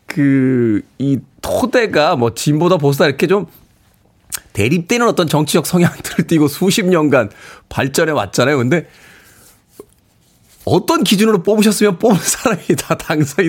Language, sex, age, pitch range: Korean, male, 40-59, 135-190 Hz